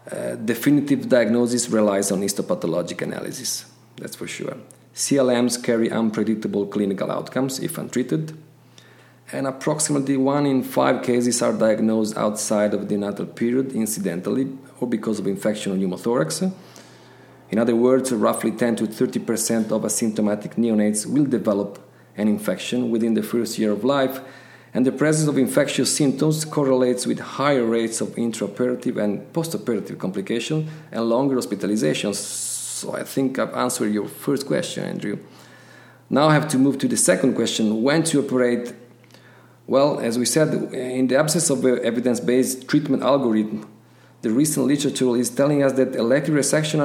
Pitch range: 110-135 Hz